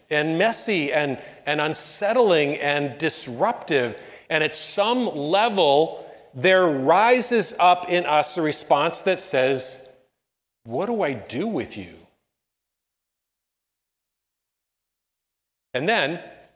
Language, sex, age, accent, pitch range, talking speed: English, male, 40-59, American, 120-185 Hz, 100 wpm